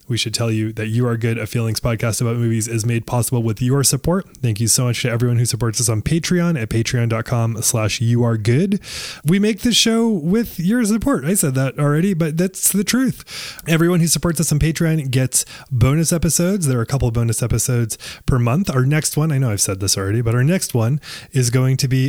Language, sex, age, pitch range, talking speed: English, male, 20-39, 115-155 Hz, 230 wpm